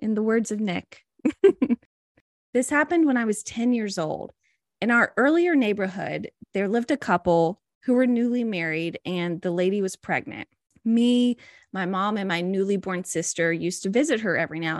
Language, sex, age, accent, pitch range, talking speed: English, female, 20-39, American, 180-245 Hz, 180 wpm